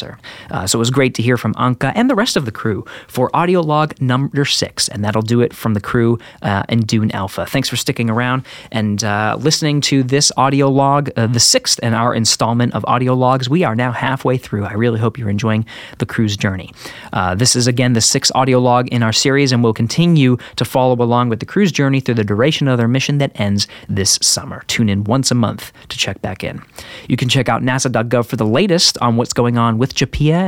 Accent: American